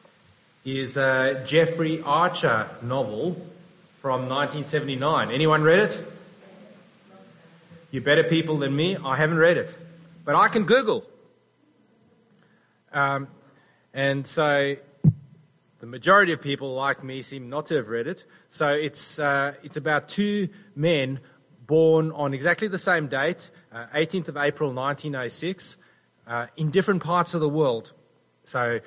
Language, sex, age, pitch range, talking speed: English, male, 30-49, 125-165 Hz, 135 wpm